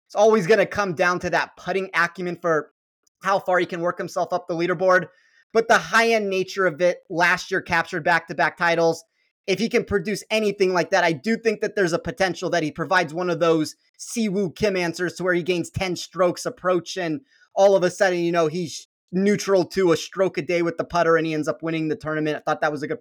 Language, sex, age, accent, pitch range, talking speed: English, male, 30-49, American, 170-205 Hz, 235 wpm